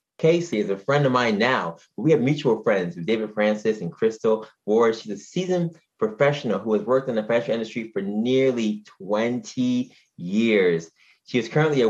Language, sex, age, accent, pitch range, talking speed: English, male, 20-39, American, 110-150 Hz, 185 wpm